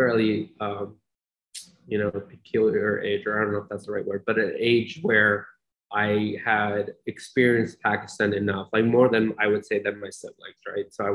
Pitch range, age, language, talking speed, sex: 100-115 Hz, 20-39, English, 195 wpm, male